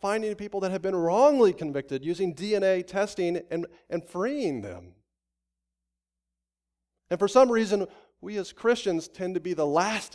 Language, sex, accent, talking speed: English, male, American, 155 wpm